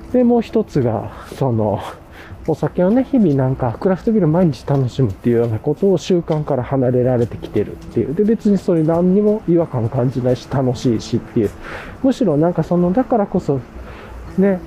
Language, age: Japanese, 20-39